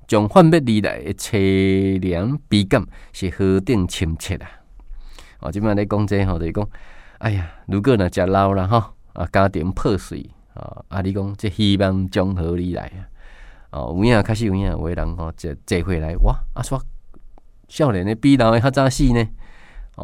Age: 20-39